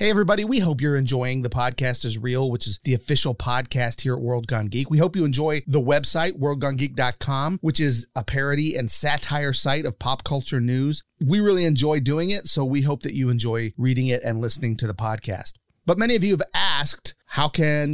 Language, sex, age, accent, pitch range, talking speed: English, male, 30-49, American, 120-150 Hz, 215 wpm